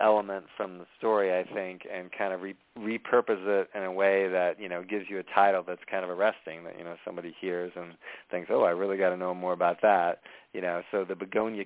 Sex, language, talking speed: male, English, 235 wpm